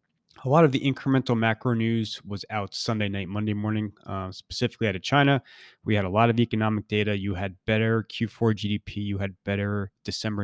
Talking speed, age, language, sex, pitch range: 195 wpm, 20-39, English, male, 95-115 Hz